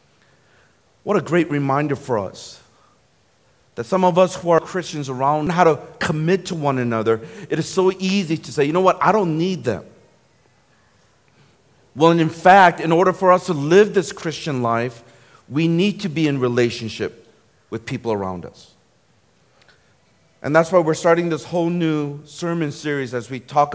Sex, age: male, 40-59